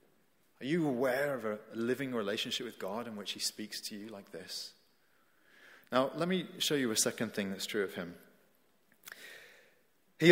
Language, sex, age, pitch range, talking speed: English, male, 30-49, 140-185 Hz, 175 wpm